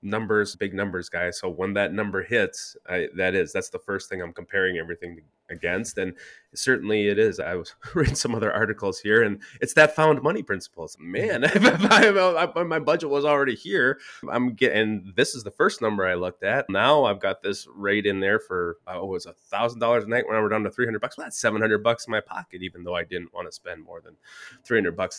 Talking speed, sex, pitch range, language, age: 240 wpm, male, 100-155 Hz, English, 20-39